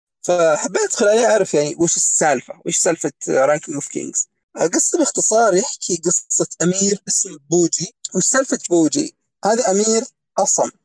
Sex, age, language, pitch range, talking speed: male, 30-49, Arabic, 160-210 Hz, 135 wpm